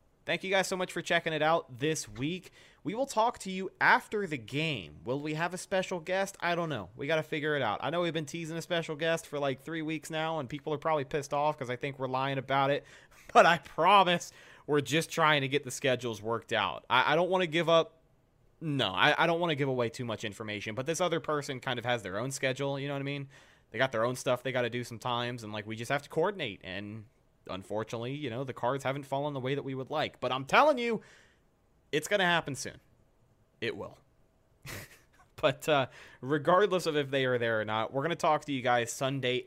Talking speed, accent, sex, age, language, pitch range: 250 wpm, American, male, 30-49, English, 120-155 Hz